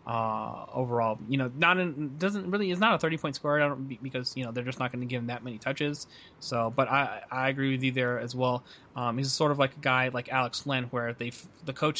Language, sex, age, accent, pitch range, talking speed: English, male, 20-39, American, 125-140 Hz, 260 wpm